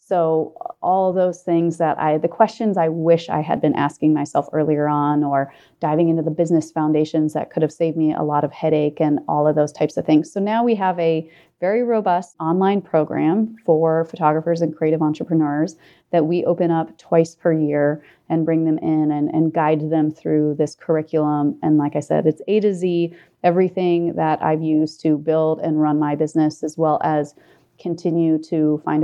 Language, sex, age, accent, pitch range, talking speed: English, female, 30-49, American, 155-170 Hz, 195 wpm